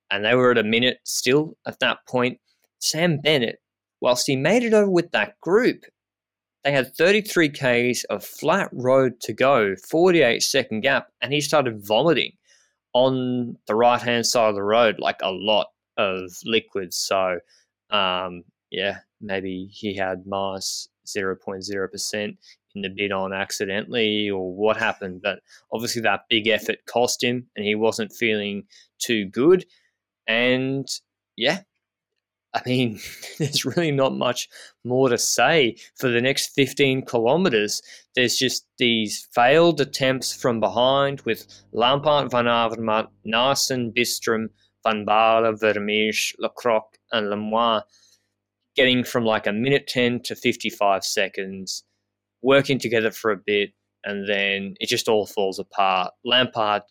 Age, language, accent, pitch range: 20-39, English, Australian, 100-130 Hz